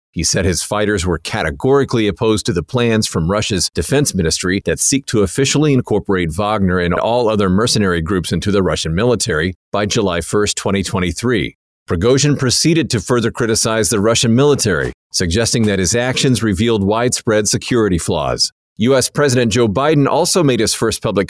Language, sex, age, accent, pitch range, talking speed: English, male, 50-69, American, 100-130 Hz, 165 wpm